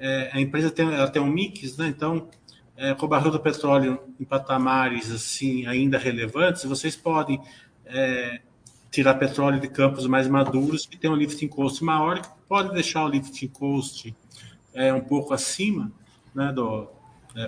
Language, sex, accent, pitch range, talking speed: Portuguese, male, Brazilian, 130-155 Hz, 160 wpm